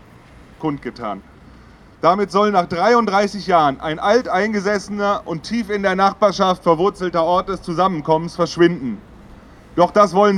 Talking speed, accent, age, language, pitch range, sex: 115 wpm, German, 30-49, German, 165-200 Hz, male